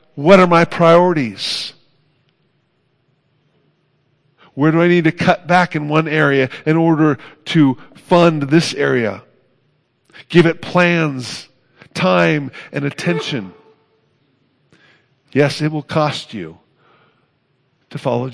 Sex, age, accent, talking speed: male, 50-69, American, 110 wpm